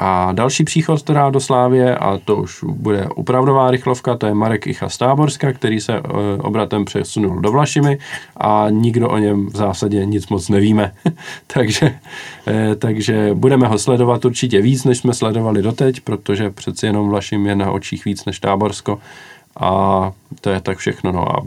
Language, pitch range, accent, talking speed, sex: Czech, 100-130 Hz, native, 170 wpm, male